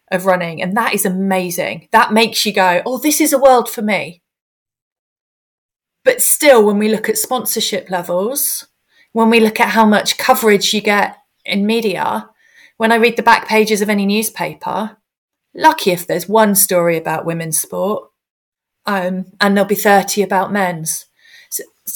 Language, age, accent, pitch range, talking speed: English, 30-49, British, 185-225 Hz, 165 wpm